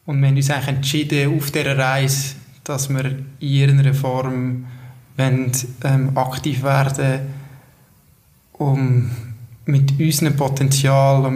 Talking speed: 115 wpm